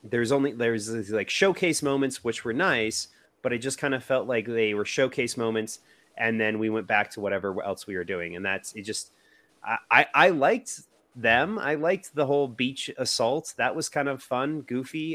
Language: English